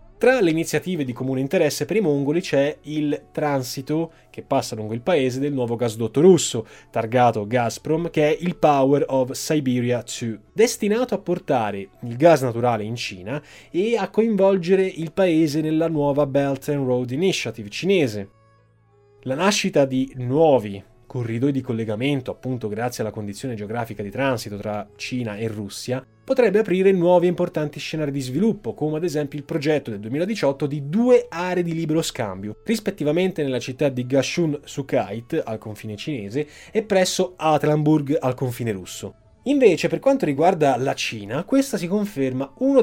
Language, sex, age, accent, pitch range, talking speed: Italian, male, 20-39, native, 125-170 Hz, 160 wpm